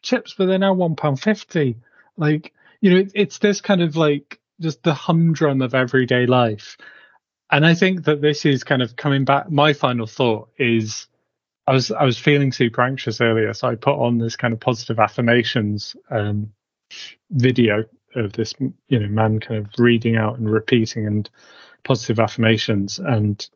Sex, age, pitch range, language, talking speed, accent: male, 30-49, 110-140 Hz, English, 170 wpm, British